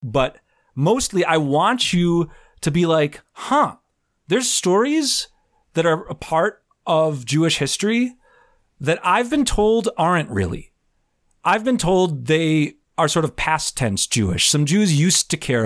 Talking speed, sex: 150 wpm, male